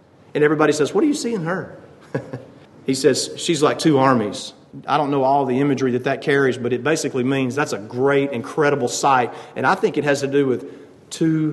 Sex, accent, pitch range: male, American, 150-230 Hz